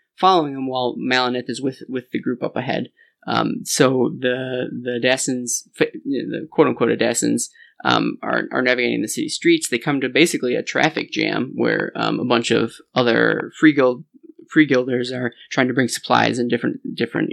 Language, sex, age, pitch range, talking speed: English, male, 20-39, 125-145 Hz, 180 wpm